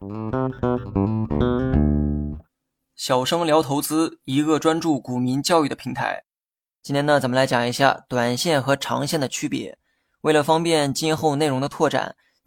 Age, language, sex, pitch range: 20-39, Chinese, male, 130-155 Hz